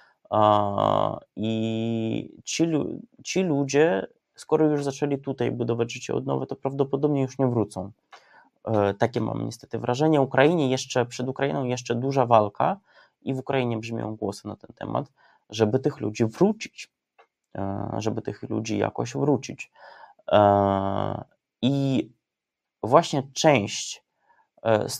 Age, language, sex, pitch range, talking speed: 20-39, Polish, male, 115-140 Hz, 120 wpm